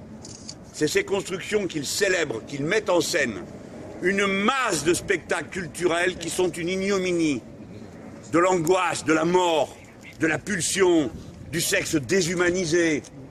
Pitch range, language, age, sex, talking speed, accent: 160-235 Hz, French, 60-79, male, 130 wpm, French